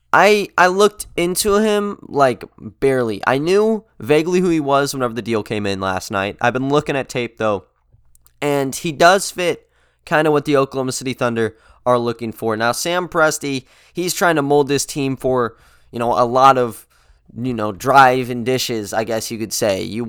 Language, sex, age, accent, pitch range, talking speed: English, male, 20-39, American, 115-155 Hz, 195 wpm